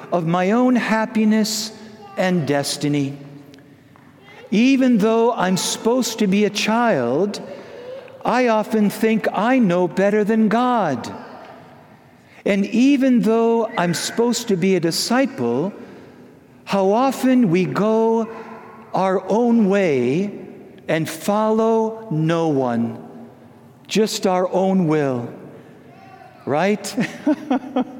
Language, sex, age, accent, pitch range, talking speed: English, male, 60-79, American, 165-225 Hz, 100 wpm